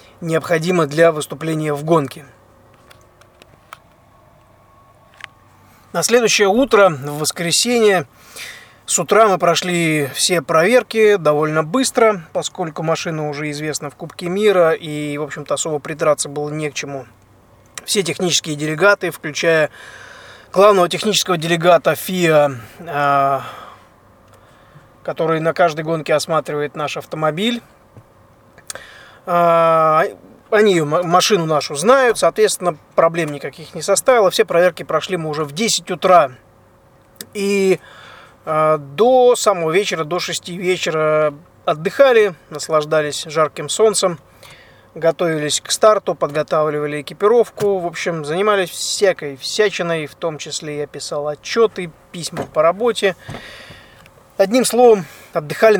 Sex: male